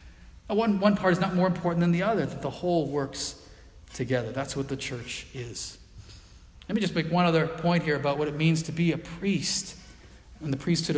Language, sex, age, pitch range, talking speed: English, male, 40-59, 135-175 Hz, 215 wpm